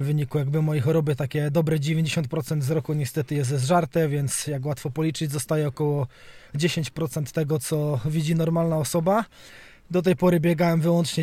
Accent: native